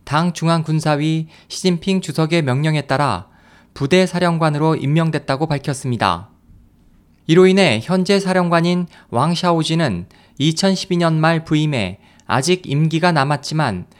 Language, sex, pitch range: Korean, male, 135-175 Hz